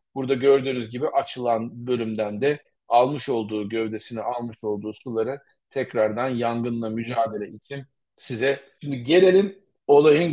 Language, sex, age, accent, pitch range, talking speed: Turkish, male, 40-59, native, 120-150 Hz, 115 wpm